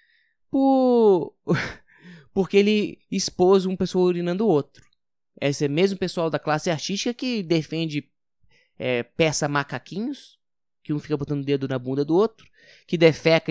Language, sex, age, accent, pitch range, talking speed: Portuguese, male, 20-39, Brazilian, 140-205 Hz, 140 wpm